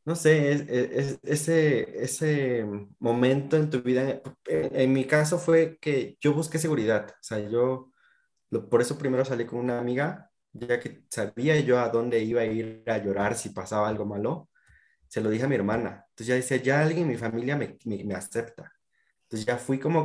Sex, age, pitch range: male, 20-39, 110-140 Hz